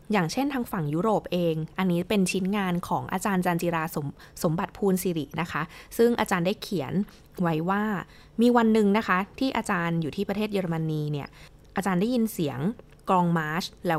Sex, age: female, 20-39